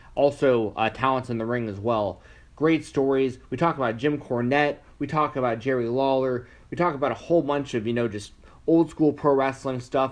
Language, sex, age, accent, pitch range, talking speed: English, male, 30-49, American, 120-145 Hz, 210 wpm